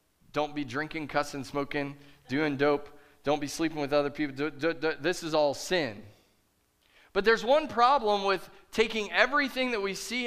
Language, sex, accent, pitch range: English, male, American, 155-235 Hz